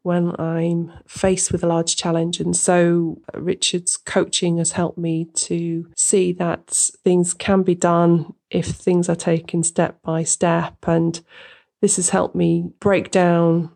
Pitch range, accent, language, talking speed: 165-180 Hz, British, English, 155 wpm